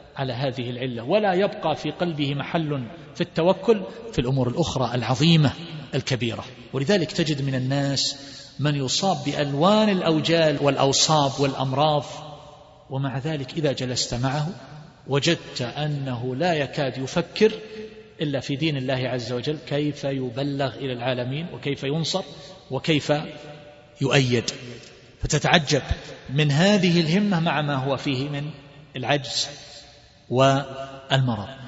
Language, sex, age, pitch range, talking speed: Arabic, male, 40-59, 135-160 Hz, 115 wpm